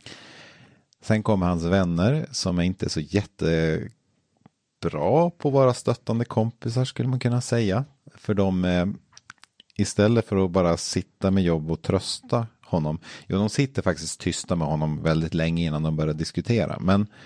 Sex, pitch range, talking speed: male, 85-115 Hz, 155 wpm